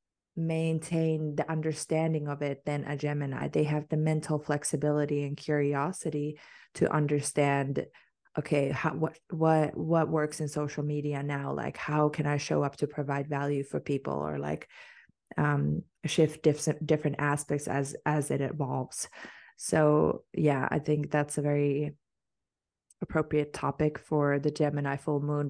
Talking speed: 145 wpm